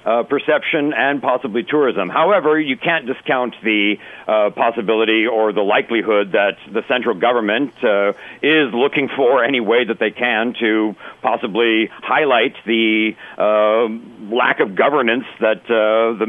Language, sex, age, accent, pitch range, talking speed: English, male, 50-69, American, 115-145 Hz, 145 wpm